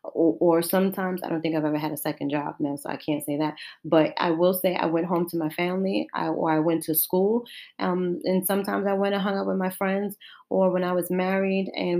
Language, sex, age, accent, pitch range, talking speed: English, female, 30-49, American, 170-190 Hz, 245 wpm